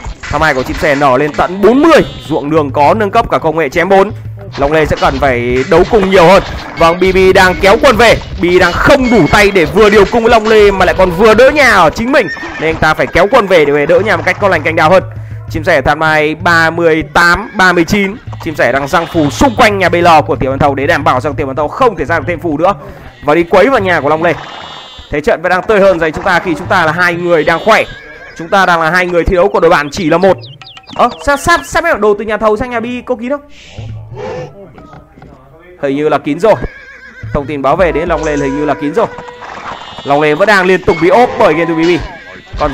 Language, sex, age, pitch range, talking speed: Vietnamese, male, 20-39, 135-185 Hz, 265 wpm